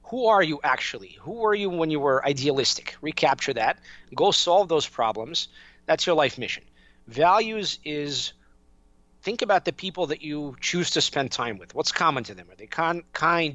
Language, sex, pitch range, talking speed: English, male, 130-165 Hz, 180 wpm